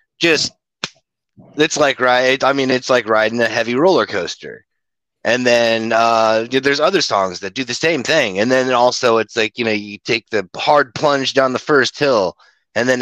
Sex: male